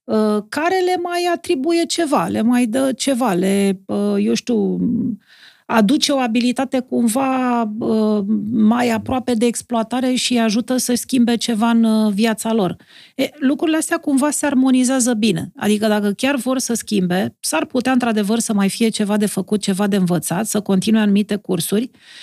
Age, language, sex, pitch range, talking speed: 40-59, Romanian, female, 205-250 Hz, 160 wpm